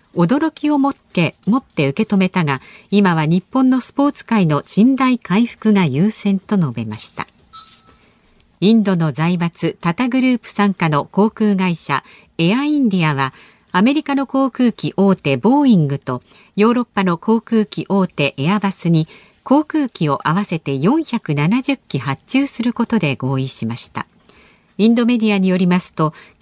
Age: 50-69